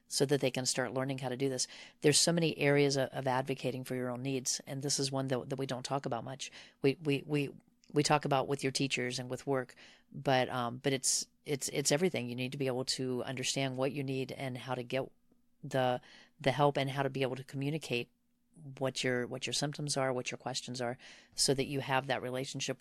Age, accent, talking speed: 40-59, American, 240 wpm